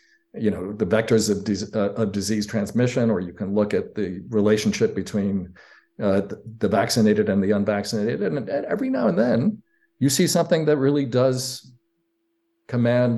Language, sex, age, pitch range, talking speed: English, male, 50-69, 105-130 Hz, 165 wpm